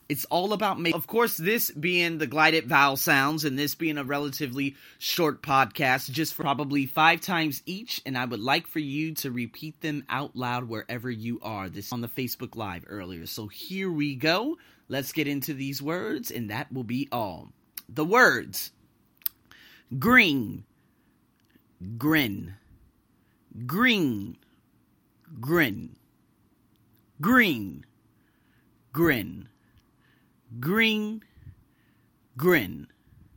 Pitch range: 125-175 Hz